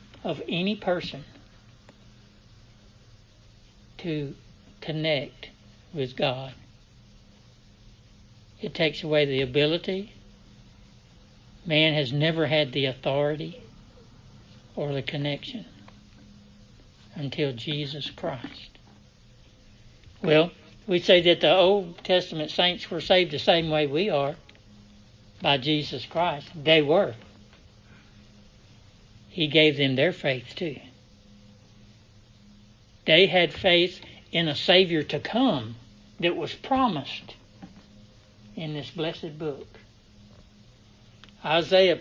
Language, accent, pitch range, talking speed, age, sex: English, American, 105-160 Hz, 95 wpm, 60-79, male